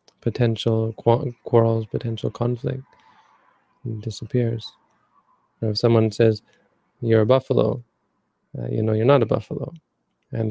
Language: English